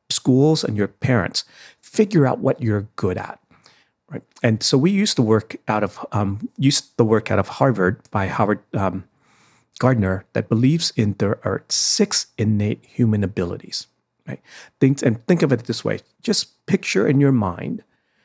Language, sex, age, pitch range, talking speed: English, male, 40-59, 105-140 Hz, 170 wpm